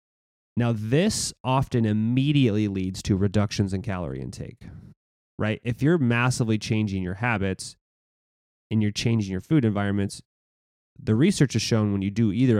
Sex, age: male, 20-39